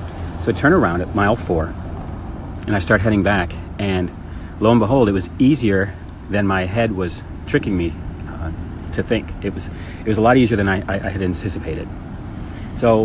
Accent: American